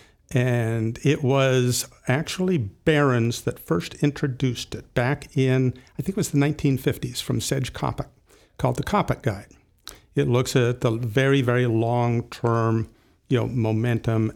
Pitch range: 120-140 Hz